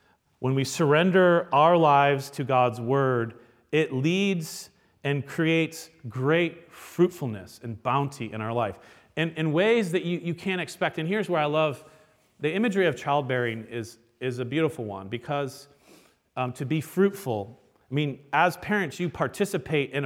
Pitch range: 125-175 Hz